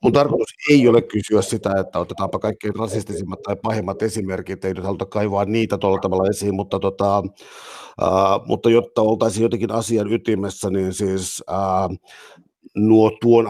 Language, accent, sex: Finnish, native, male